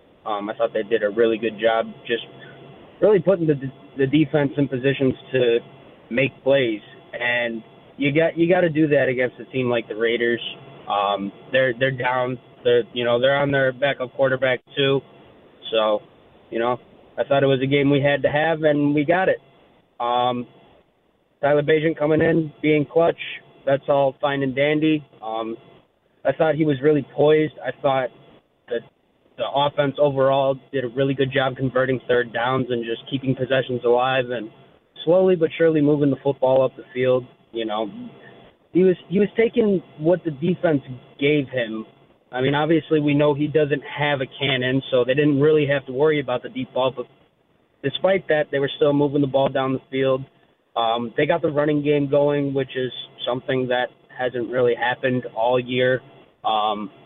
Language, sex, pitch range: English, male, 125-150 Hz